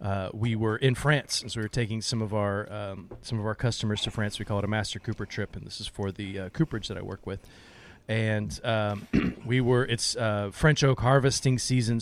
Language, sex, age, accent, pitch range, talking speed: English, male, 30-49, American, 105-130 Hz, 235 wpm